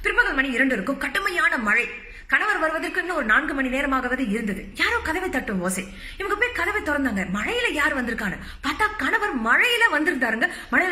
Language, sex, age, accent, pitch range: Tamil, female, 30-49, native, 205-310 Hz